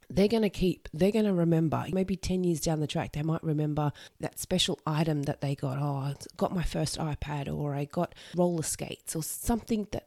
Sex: female